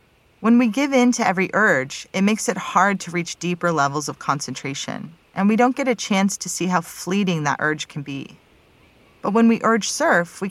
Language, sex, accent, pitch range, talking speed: English, female, American, 155-215 Hz, 210 wpm